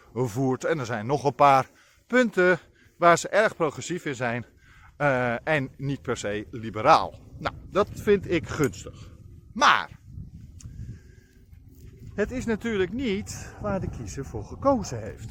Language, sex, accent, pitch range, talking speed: Dutch, male, Dutch, 115-170 Hz, 135 wpm